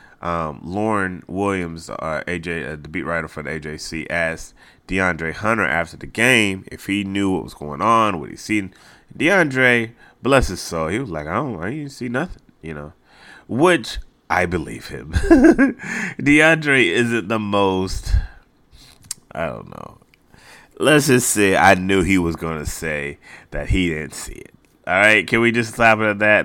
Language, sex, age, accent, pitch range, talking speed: English, male, 30-49, American, 85-120 Hz, 175 wpm